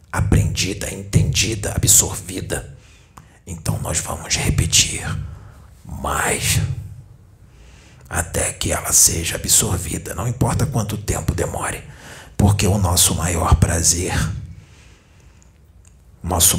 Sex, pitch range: male, 80-95 Hz